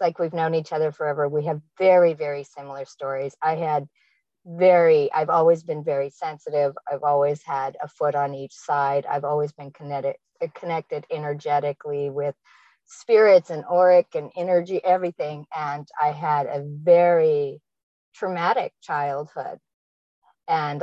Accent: American